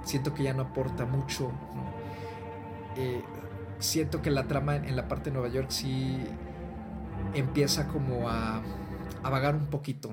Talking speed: 150 wpm